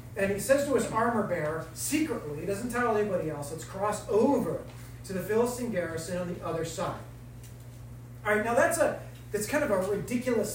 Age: 30-49